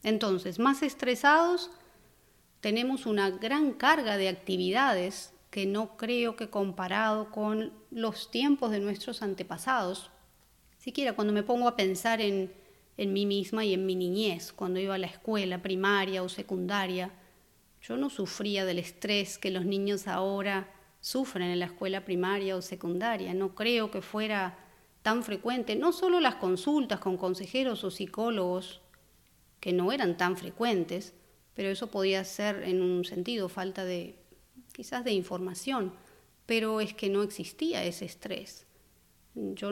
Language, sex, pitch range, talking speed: Spanish, female, 185-220 Hz, 145 wpm